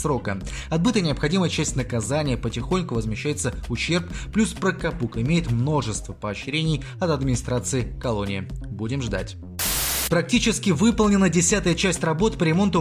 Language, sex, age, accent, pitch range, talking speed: Russian, male, 20-39, native, 125-175 Hz, 115 wpm